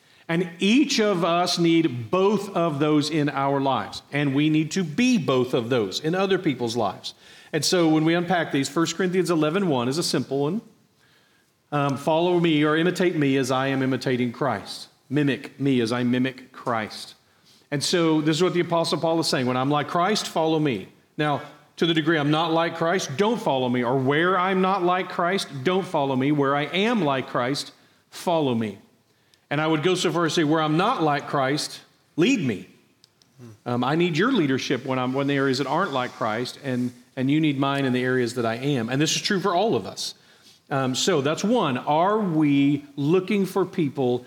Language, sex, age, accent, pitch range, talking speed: English, male, 40-59, American, 130-170 Hz, 210 wpm